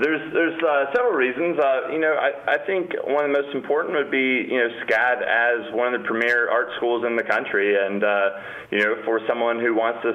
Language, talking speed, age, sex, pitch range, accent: English, 235 wpm, 30-49, male, 105-130 Hz, American